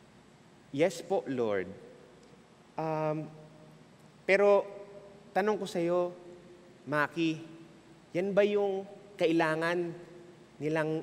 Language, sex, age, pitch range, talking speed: English, male, 30-49, 170-220 Hz, 75 wpm